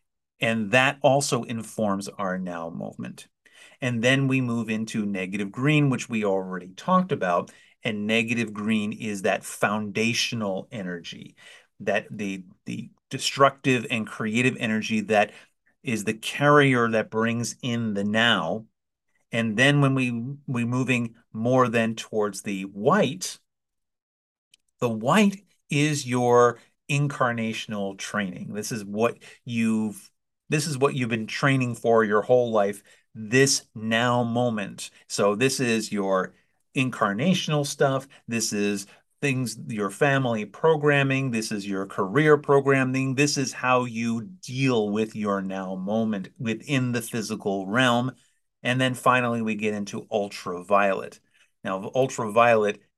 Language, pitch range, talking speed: English, 105-130 Hz, 130 wpm